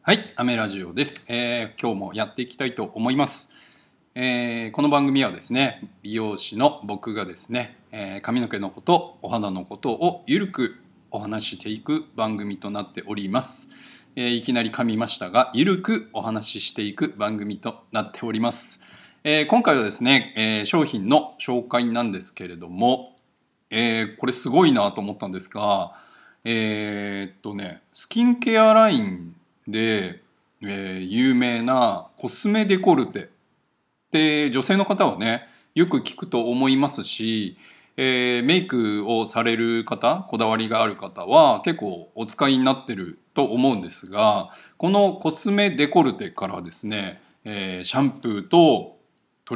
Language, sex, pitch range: Japanese, male, 105-135 Hz